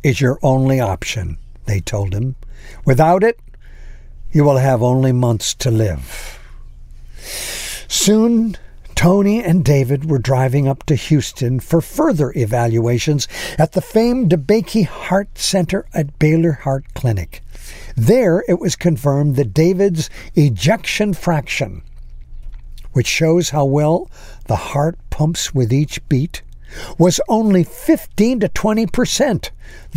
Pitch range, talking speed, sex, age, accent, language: 125-190 Hz, 120 wpm, male, 60-79, American, English